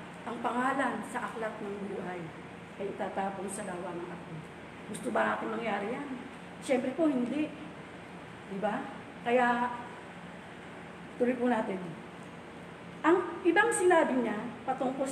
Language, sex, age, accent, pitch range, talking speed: English, female, 40-59, Filipino, 195-245 Hz, 120 wpm